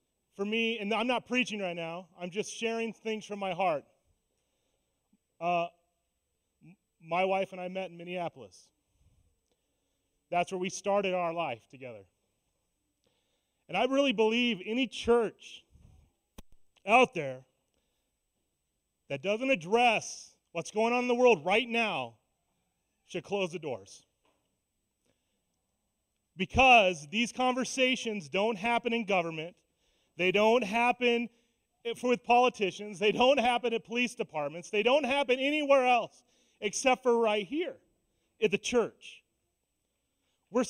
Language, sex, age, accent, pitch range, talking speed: English, male, 30-49, American, 185-235 Hz, 125 wpm